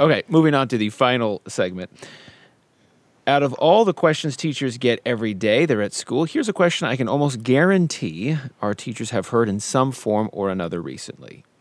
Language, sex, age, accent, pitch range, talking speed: English, male, 40-59, American, 110-150 Hz, 185 wpm